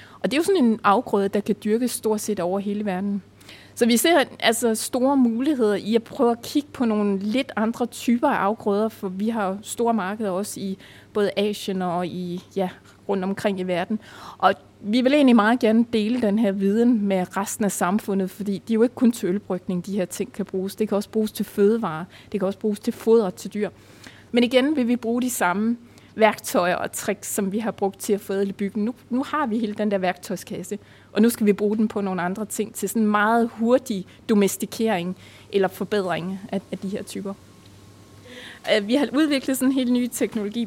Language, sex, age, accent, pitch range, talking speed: Danish, female, 20-39, native, 190-230 Hz, 215 wpm